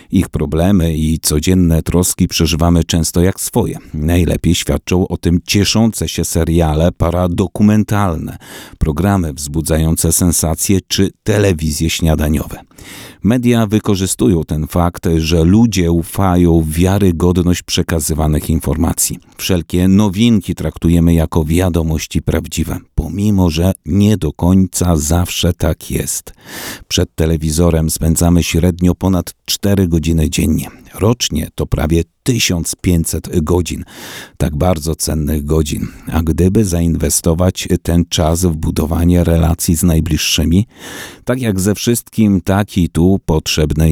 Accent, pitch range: native, 80-95 Hz